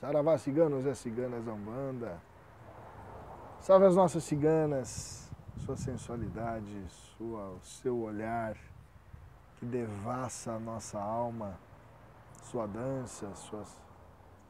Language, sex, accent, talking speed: Portuguese, male, Brazilian, 90 wpm